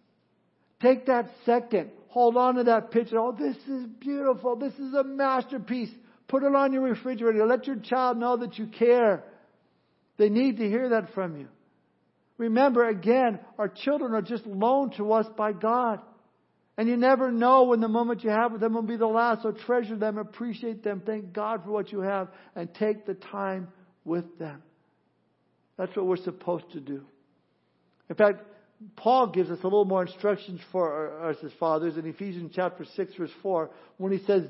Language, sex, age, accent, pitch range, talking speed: English, male, 60-79, American, 190-235 Hz, 185 wpm